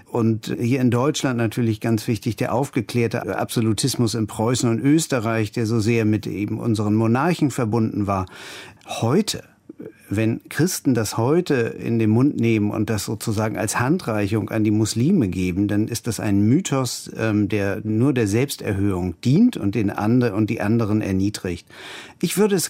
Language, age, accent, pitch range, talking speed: German, 50-69, German, 110-130 Hz, 165 wpm